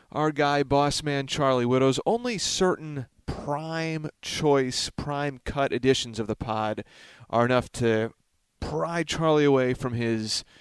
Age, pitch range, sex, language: 30-49, 115-145 Hz, male, English